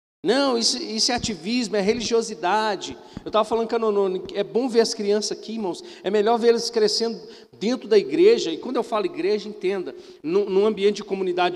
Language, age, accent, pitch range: Portuguese, 40-59, Brazilian, 205-275 Hz